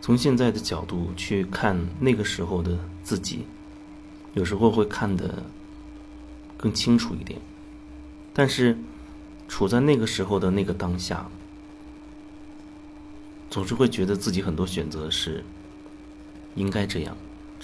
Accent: native